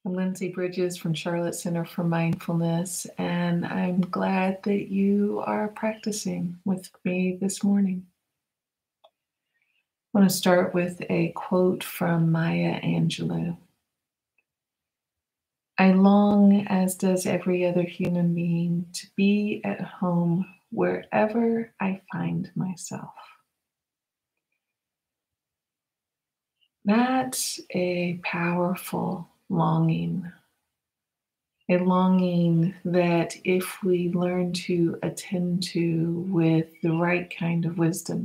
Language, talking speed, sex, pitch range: English, 100 wpm, female, 170-190 Hz